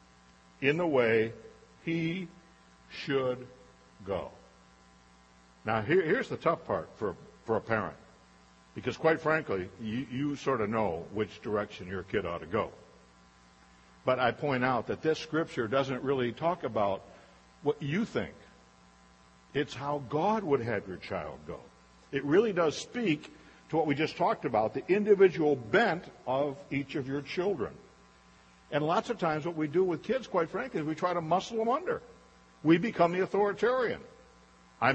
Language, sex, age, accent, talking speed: English, male, 60-79, American, 160 wpm